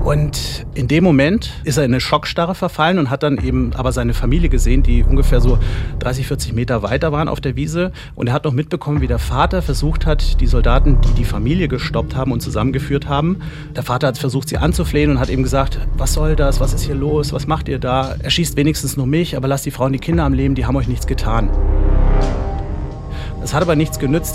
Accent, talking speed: German, 230 wpm